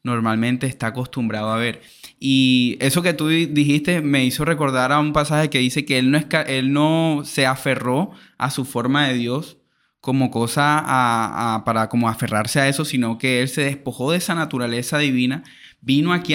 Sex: male